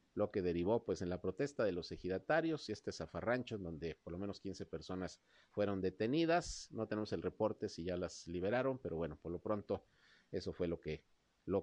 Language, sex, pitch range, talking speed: Spanish, male, 90-115 Hz, 200 wpm